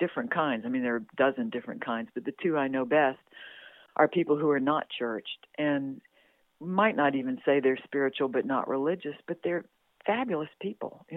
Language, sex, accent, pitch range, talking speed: English, female, American, 140-175 Hz, 200 wpm